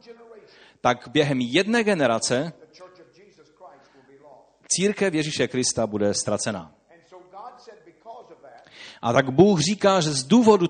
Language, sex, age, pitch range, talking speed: Czech, male, 40-59, 140-205 Hz, 90 wpm